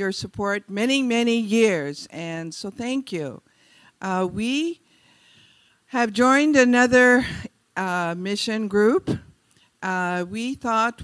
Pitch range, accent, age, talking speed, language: 175-220 Hz, American, 50-69, 110 wpm, English